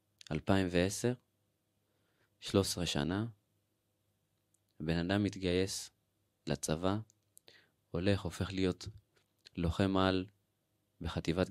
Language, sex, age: Hebrew, male, 20-39